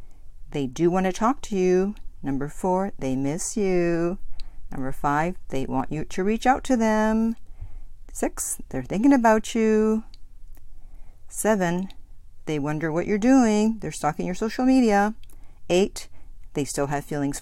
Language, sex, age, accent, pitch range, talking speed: English, female, 50-69, American, 140-205 Hz, 150 wpm